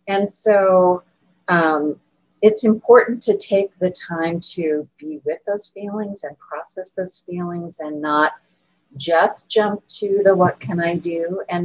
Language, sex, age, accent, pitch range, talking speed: English, female, 40-59, American, 150-195 Hz, 150 wpm